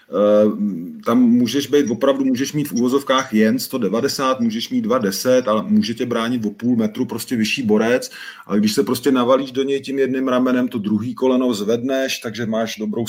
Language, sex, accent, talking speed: Czech, male, native, 180 wpm